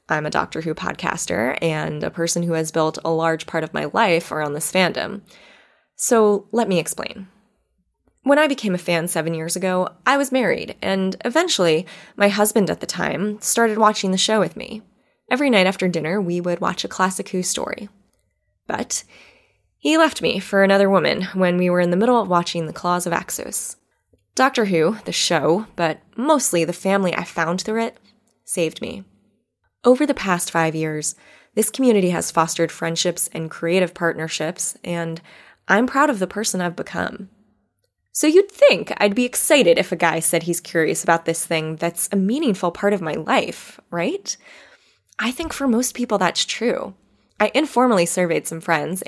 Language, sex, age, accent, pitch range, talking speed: English, female, 20-39, American, 170-220 Hz, 180 wpm